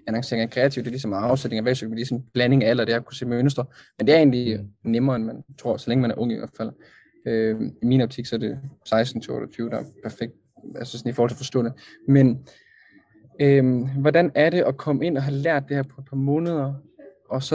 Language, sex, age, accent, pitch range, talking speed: Danish, male, 20-39, native, 120-140 Hz, 255 wpm